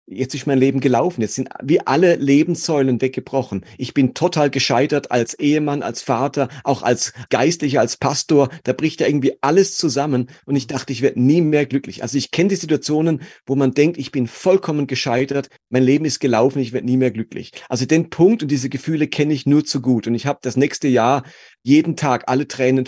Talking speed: 210 wpm